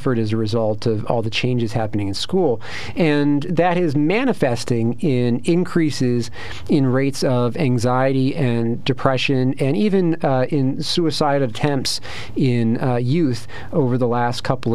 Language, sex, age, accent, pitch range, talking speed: English, male, 40-59, American, 120-145 Hz, 140 wpm